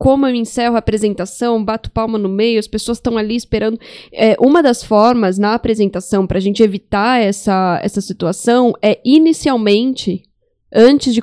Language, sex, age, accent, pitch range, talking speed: Portuguese, female, 10-29, Brazilian, 210-250 Hz, 160 wpm